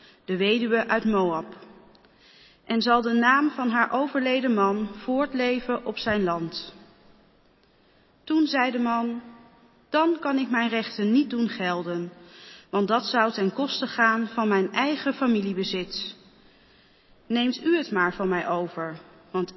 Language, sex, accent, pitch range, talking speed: Dutch, female, Dutch, 190-245 Hz, 140 wpm